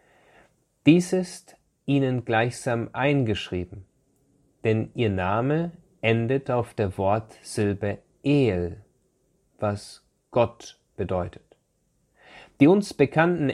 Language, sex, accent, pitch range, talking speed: German, male, German, 105-145 Hz, 85 wpm